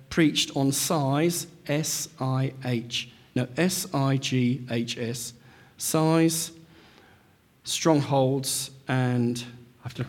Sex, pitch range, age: male, 130-165 Hz, 50-69